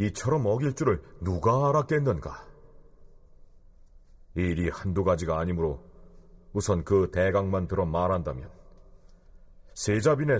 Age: 40-59